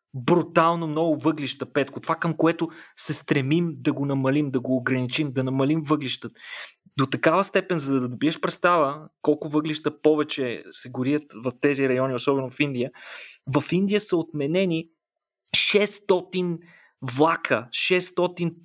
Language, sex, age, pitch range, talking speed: Bulgarian, male, 20-39, 130-165 Hz, 140 wpm